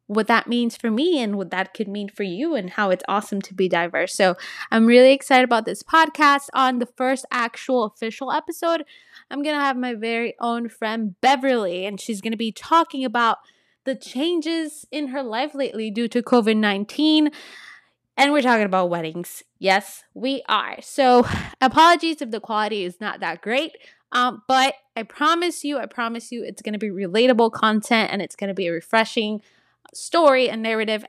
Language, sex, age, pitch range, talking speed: English, female, 20-39, 195-260 Hz, 190 wpm